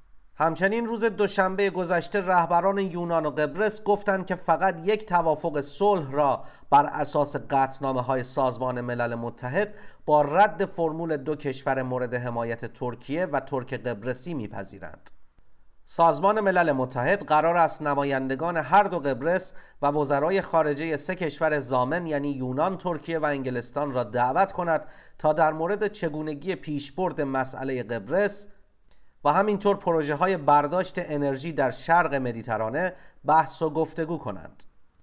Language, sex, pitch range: Persian, male, 130-175 Hz